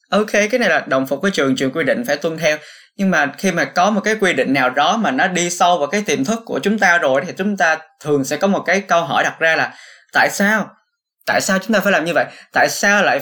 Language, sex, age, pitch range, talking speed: Vietnamese, male, 20-39, 155-210 Hz, 285 wpm